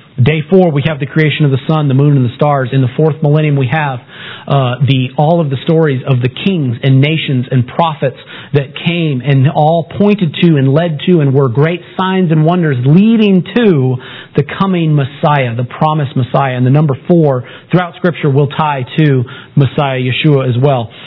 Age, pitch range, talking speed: 40-59, 135-160 Hz, 195 wpm